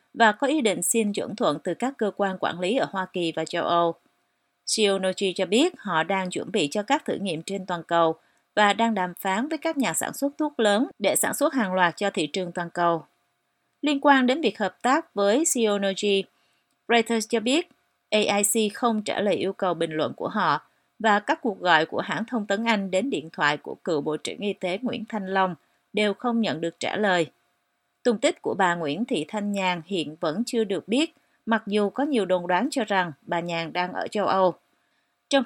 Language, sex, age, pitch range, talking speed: Vietnamese, female, 30-49, 180-235 Hz, 220 wpm